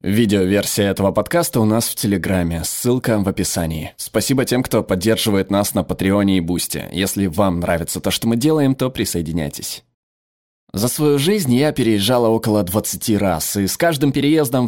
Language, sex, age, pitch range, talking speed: Russian, male, 20-39, 100-155 Hz, 165 wpm